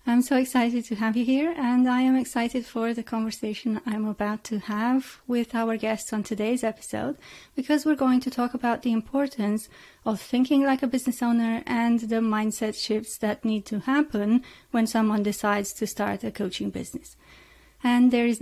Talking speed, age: 185 wpm, 30-49